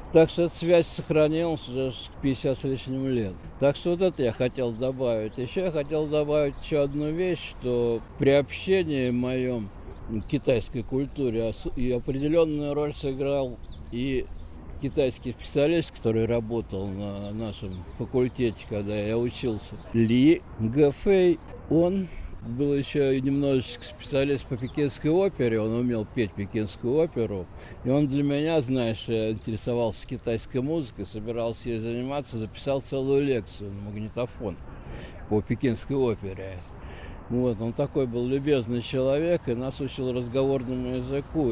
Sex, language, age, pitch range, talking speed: male, Russian, 60-79, 110-140 Hz, 135 wpm